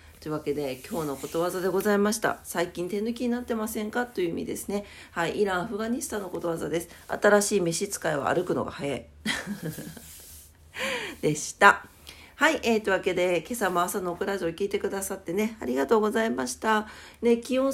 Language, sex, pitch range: Japanese, female, 170-225 Hz